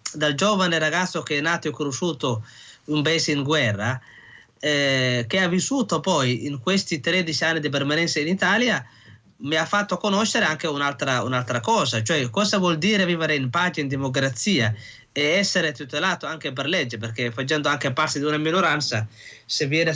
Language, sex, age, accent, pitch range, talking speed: Italian, male, 20-39, native, 140-180 Hz, 170 wpm